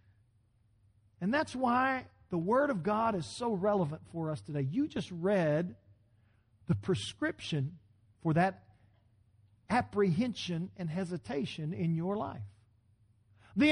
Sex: male